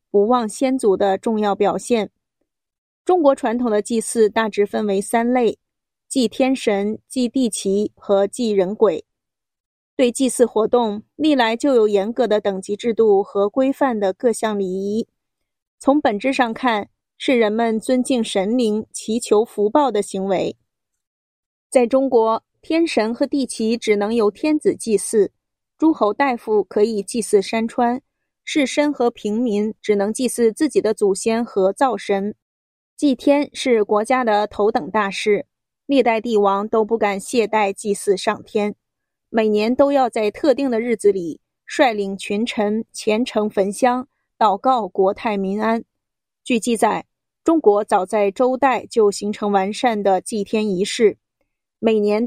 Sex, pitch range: female, 205-255 Hz